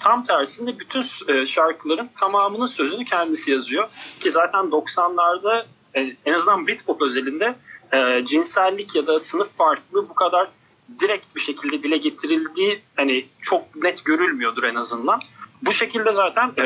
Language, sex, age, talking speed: Turkish, male, 40-59, 130 wpm